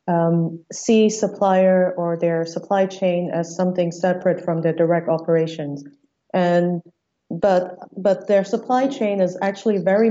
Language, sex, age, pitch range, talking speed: English, female, 30-49, 170-200 Hz, 135 wpm